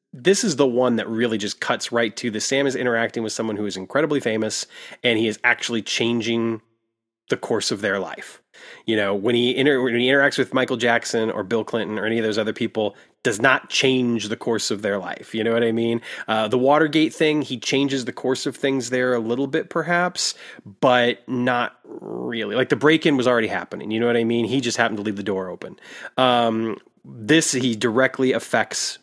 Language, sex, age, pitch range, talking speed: English, male, 30-49, 115-135 Hz, 215 wpm